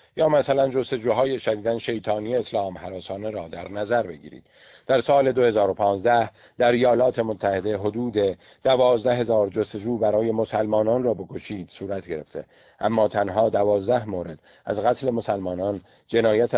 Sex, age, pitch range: male, 50-69, 100-120 Hz